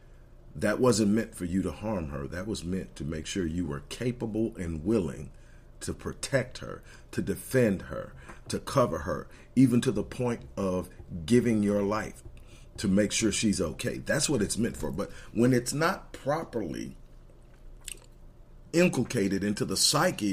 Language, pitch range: English, 90-120 Hz